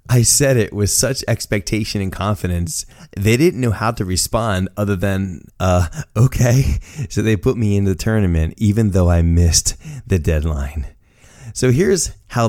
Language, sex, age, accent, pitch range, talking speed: English, male, 30-49, American, 95-135 Hz, 165 wpm